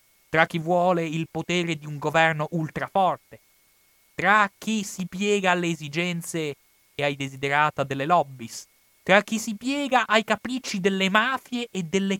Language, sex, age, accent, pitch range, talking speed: Italian, male, 30-49, native, 125-180 Hz, 150 wpm